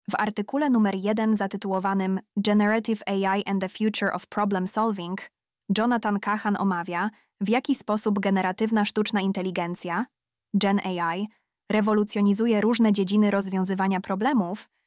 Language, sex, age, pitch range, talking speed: Polish, female, 20-39, 190-215 Hz, 115 wpm